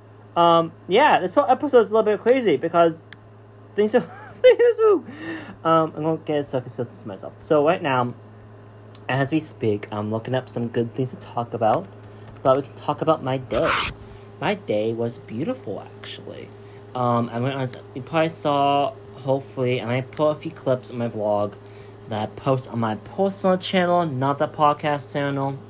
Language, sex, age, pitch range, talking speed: English, male, 20-39, 100-145 Hz, 180 wpm